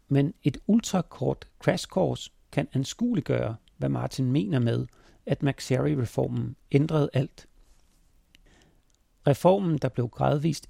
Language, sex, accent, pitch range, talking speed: Danish, male, native, 120-155 Hz, 110 wpm